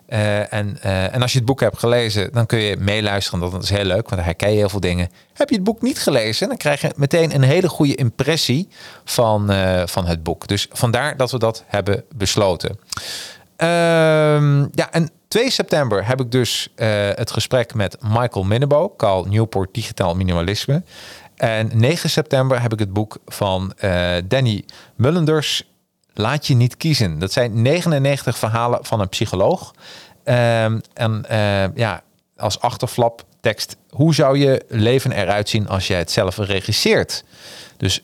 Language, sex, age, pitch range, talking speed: Dutch, male, 40-59, 100-145 Hz, 175 wpm